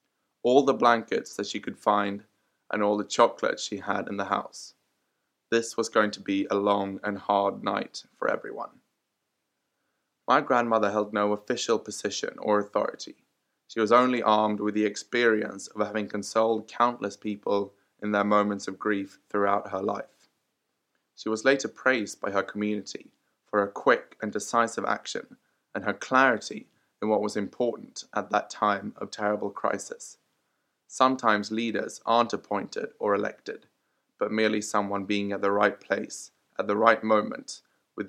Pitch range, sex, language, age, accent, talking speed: 105-115 Hz, male, English, 20-39, British, 160 wpm